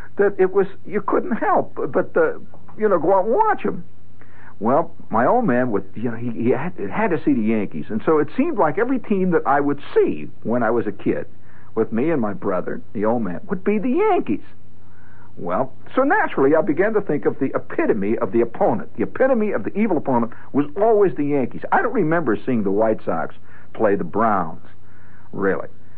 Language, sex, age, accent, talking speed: English, male, 60-79, American, 215 wpm